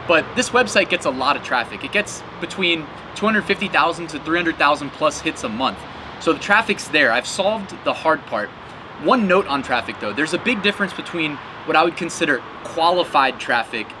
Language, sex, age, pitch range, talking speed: English, male, 20-39, 155-200 Hz, 185 wpm